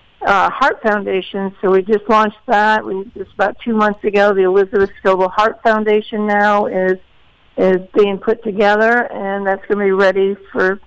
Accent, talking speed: American, 170 wpm